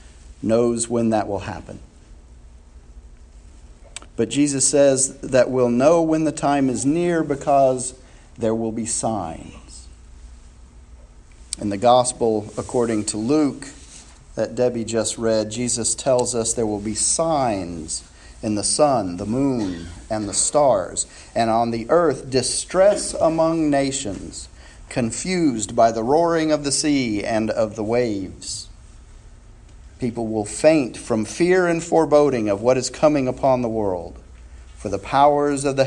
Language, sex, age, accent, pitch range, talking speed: English, male, 40-59, American, 85-140 Hz, 140 wpm